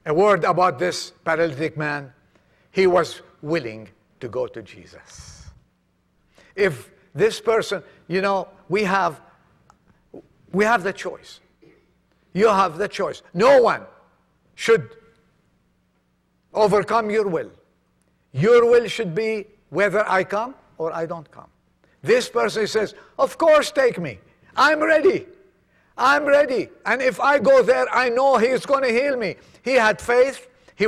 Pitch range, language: 165-240 Hz, English